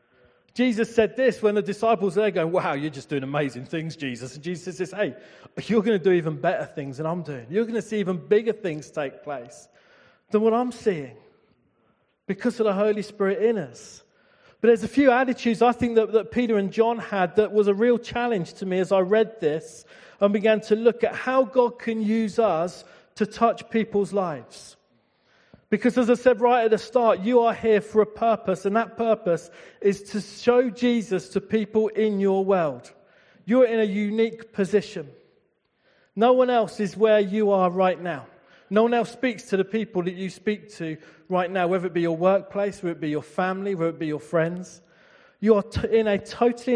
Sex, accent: male, British